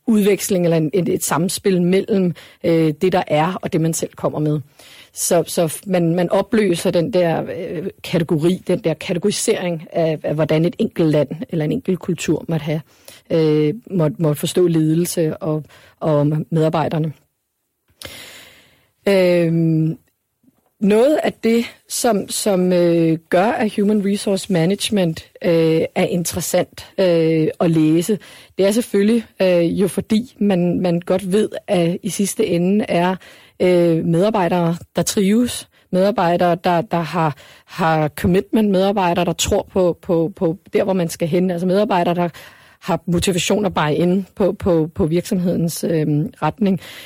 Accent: native